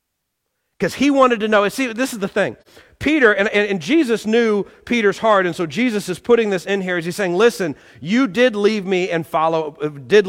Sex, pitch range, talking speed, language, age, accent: male, 190-245 Hz, 215 wpm, English, 40-59, American